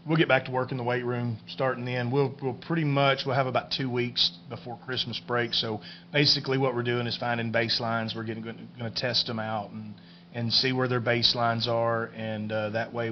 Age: 30-49